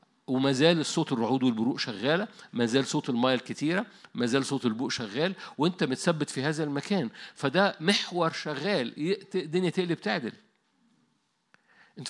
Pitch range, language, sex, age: 140-200 Hz, Arabic, male, 50-69